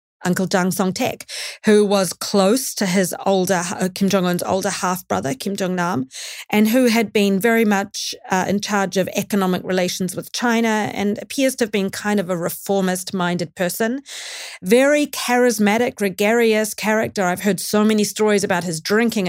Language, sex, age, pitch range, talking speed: English, female, 40-59, 180-220 Hz, 170 wpm